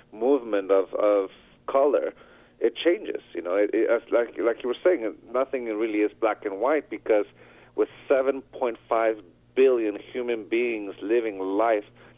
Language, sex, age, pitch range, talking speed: English, male, 50-69, 110-170 Hz, 150 wpm